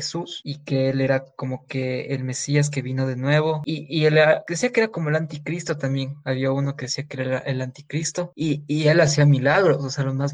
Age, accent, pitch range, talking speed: 20-39, Mexican, 135-155 Hz, 230 wpm